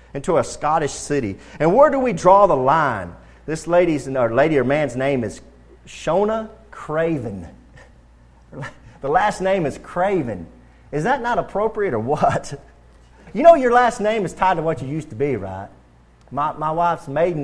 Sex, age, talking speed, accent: male, 40-59, 170 wpm, American